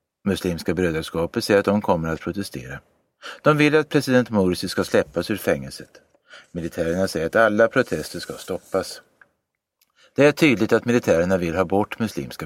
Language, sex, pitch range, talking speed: Swedish, male, 85-115 Hz, 160 wpm